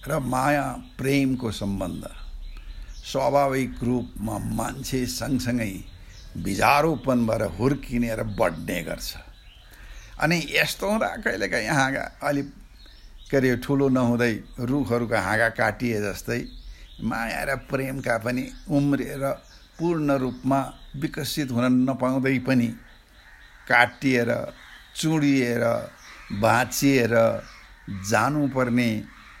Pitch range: 115-145 Hz